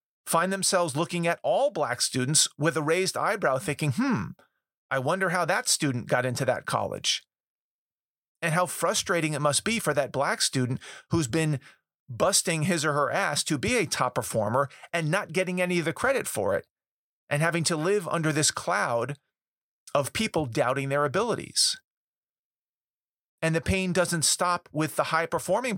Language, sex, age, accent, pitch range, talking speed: English, male, 40-59, American, 145-180 Hz, 170 wpm